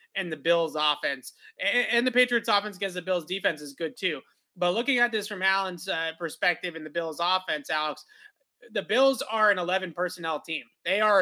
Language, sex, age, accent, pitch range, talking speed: English, male, 20-39, American, 175-210 Hz, 200 wpm